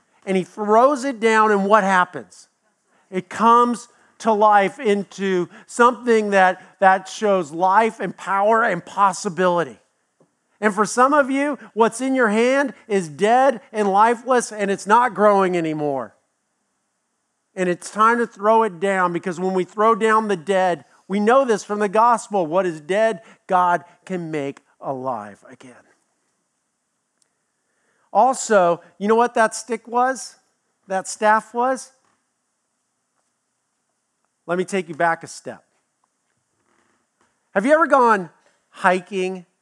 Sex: male